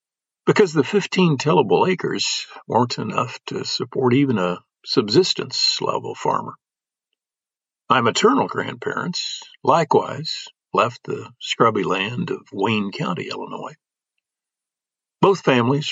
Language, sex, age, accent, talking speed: English, male, 50-69, American, 105 wpm